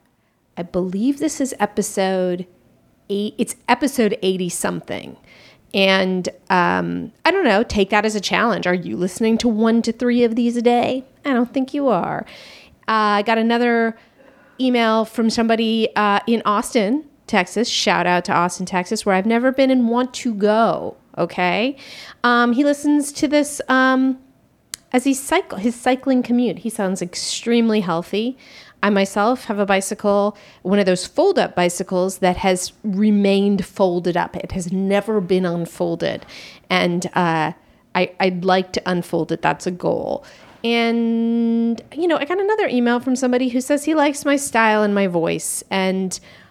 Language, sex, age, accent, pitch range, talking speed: English, female, 40-59, American, 185-245 Hz, 165 wpm